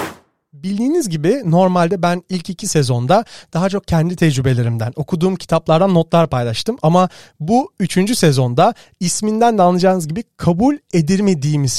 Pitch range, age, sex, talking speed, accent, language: 150-195 Hz, 40-59, male, 125 wpm, native, Turkish